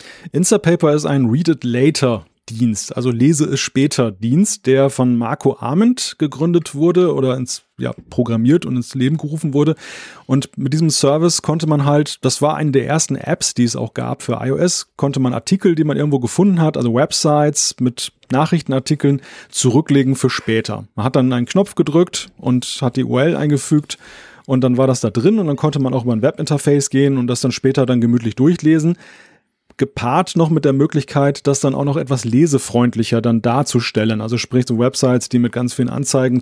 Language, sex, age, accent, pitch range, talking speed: German, male, 30-49, German, 125-150 Hz, 185 wpm